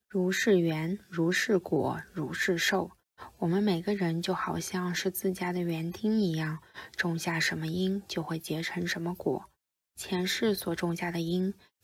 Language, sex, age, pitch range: Chinese, female, 20-39, 165-185 Hz